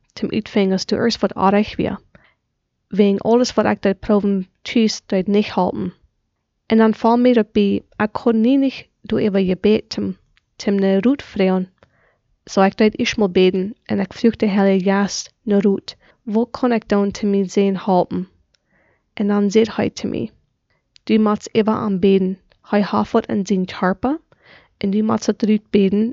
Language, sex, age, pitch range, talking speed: English, female, 20-39, 195-225 Hz, 165 wpm